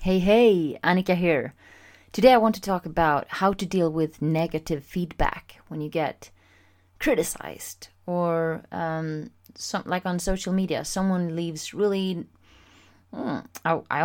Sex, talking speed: female, 125 wpm